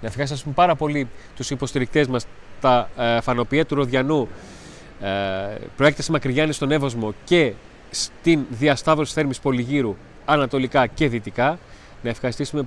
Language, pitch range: Greek, 110-150 Hz